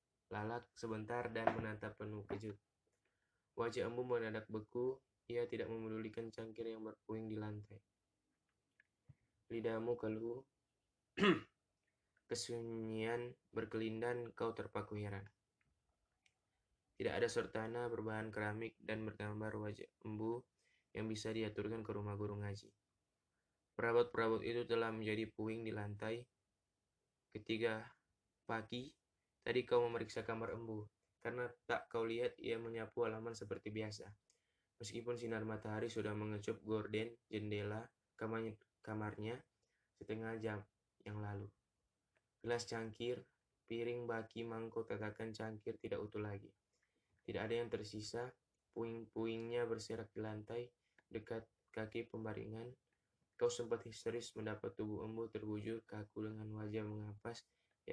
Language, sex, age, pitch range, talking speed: Indonesian, male, 10-29, 105-115 Hz, 115 wpm